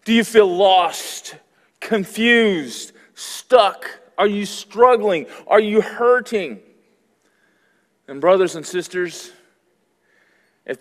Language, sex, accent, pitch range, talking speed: English, male, American, 135-190 Hz, 95 wpm